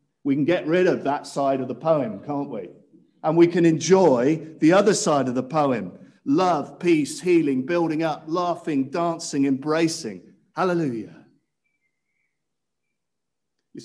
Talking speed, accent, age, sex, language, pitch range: 140 wpm, British, 50-69, male, English, 115-160 Hz